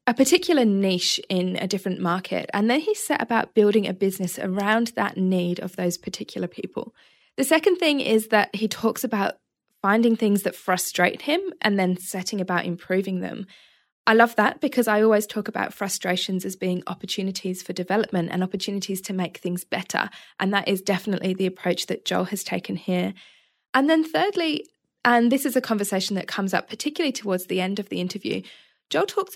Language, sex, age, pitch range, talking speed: English, female, 20-39, 190-225 Hz, 190 wpm